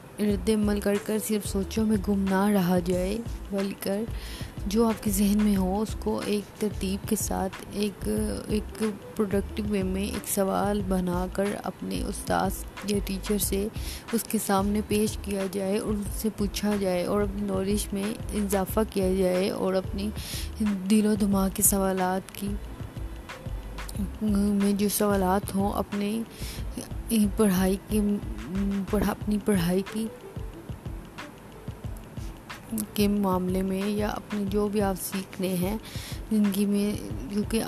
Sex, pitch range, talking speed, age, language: female, 195-215 Hz, 140 wpm, 20-39, Urdu